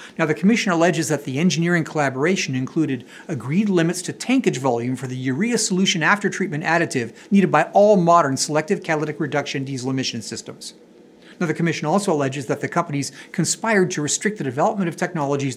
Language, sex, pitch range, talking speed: English, male, 140-185 Hz, 175 wpm